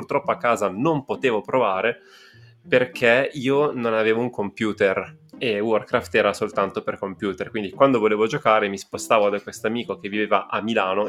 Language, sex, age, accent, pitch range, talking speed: Italian, male, 20-39, native, 100-120 Hz, 170 wpm